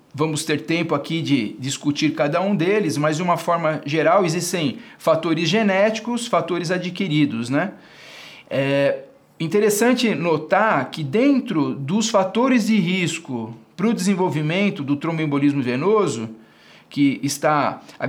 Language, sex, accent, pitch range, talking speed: English, male, Brazilian, 150-190 Hz, 125 wpm